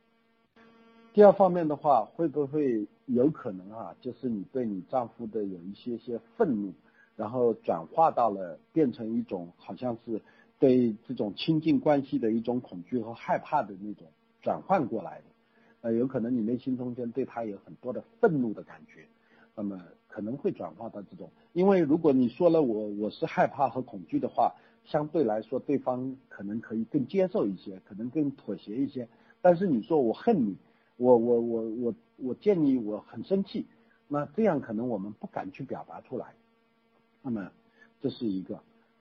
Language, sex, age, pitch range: Chinese, male, 50-69, 110-170 Hz